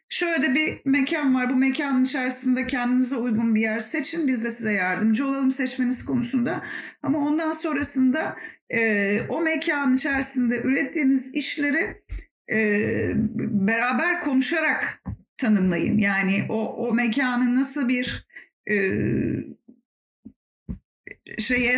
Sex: female